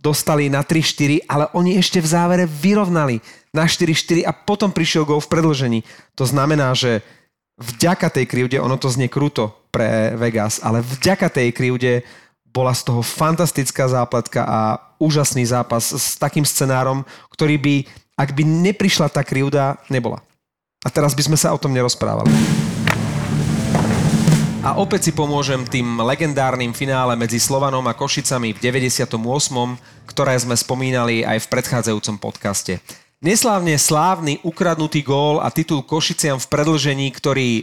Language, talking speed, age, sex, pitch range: Slovak, 145 wpm, 30-49, male, 120-155 Hz